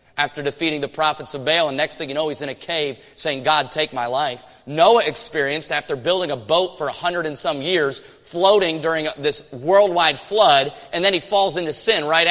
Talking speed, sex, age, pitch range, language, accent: 215 wpm, male, 30-49, 145-215 Hz, English, American